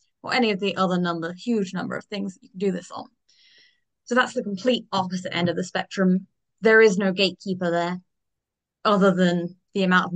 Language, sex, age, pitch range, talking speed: English, female, 20-39, 175-210 Hz, 205 wpm